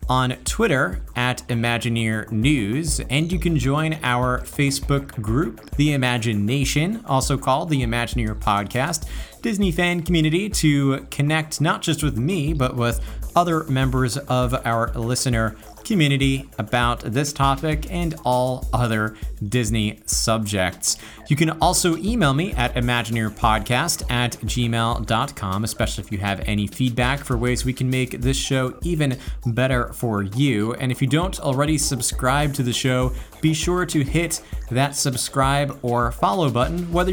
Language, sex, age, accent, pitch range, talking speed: English, male, 30-49, American, 115-145 Hz, 145 wpm